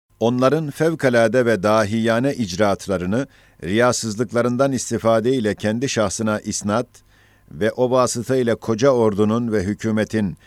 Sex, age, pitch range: male, 50-69, 105-125 Hz